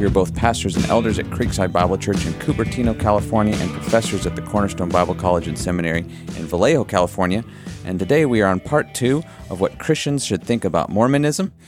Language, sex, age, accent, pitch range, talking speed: English, male, 40-59, American, 90-110 Hz, 200 wpm